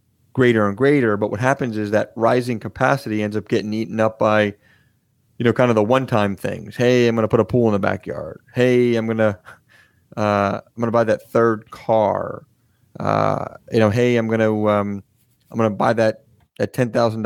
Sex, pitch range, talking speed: male, 110-125 Hz, 210 wpm